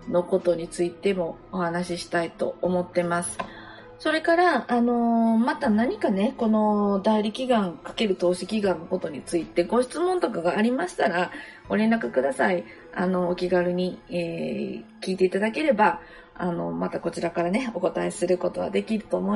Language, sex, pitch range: Japanese, female, 175-215 Hz